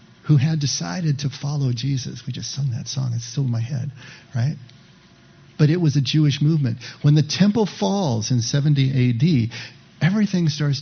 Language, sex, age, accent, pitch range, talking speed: English, male, 50-69, American, 125-155 Hz, 175 wpm